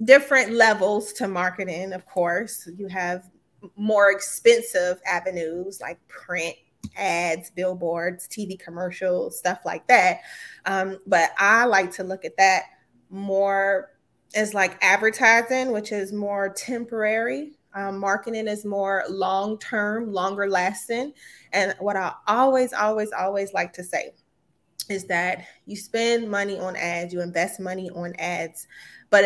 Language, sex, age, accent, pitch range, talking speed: English, female, 20-39, American, 190-220 Hz, 135 wpm